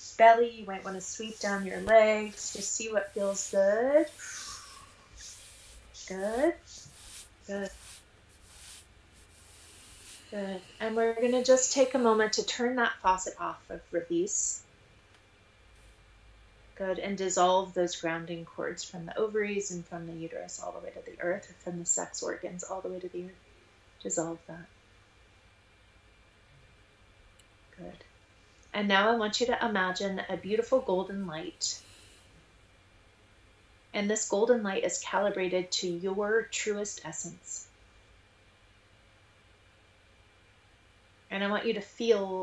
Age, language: 30-49, English